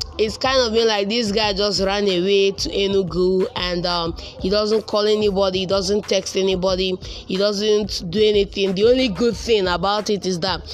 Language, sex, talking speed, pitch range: English, female, 190 wpm, 190-245 Hz